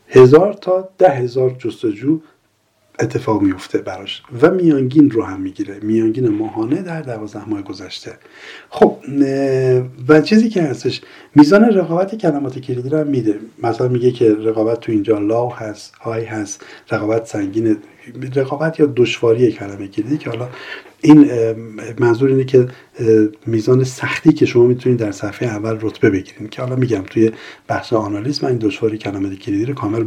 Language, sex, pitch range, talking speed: Persian, male, 115-180 Hz, 150 wpm